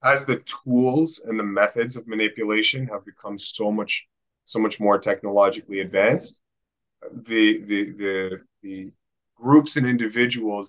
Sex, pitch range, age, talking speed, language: male, 100-125 Hz, 30-49, 135 wpm, English